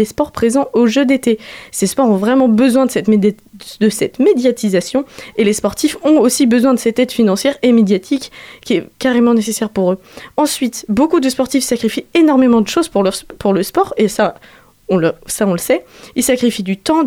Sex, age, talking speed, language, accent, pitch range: female, 20-39, 210 wpm, French, French, 210-270 Hz